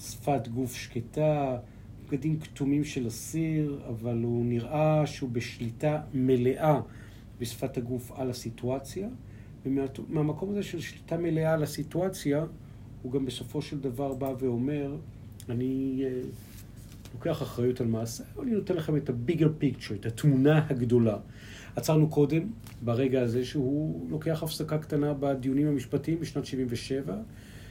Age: 40-59